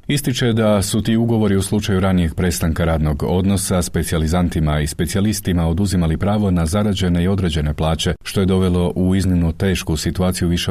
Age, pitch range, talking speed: 40-59, 80-95 Hz, 165 wpm